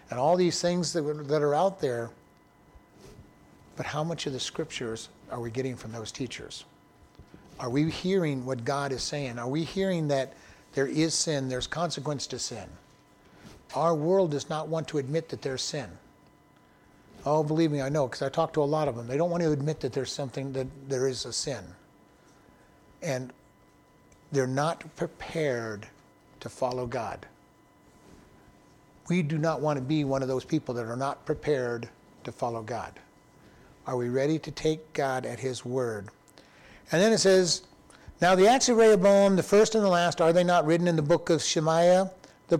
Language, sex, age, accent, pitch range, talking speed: English, male, 60-79, American, 135-165 Hz, 185 wpm